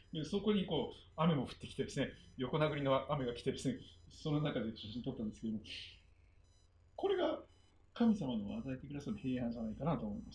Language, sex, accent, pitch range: Japanese, male, native, 110-175 Hz